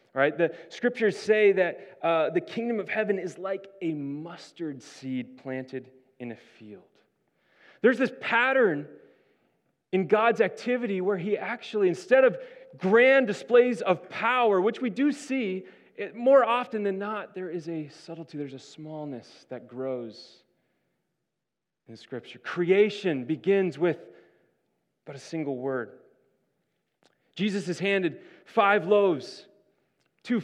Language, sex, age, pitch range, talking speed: English, male, 30-49, 140-215 Hz, 130 wpm